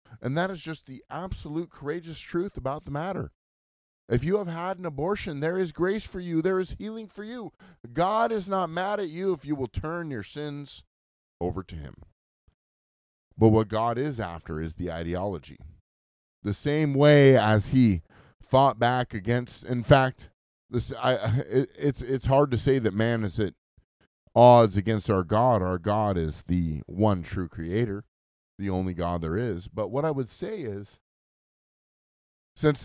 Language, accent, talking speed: English, American, 175 wpm